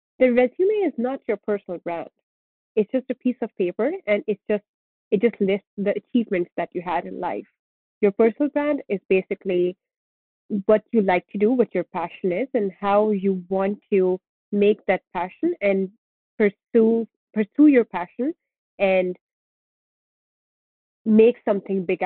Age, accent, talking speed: 30-49, Indian, 155 wpm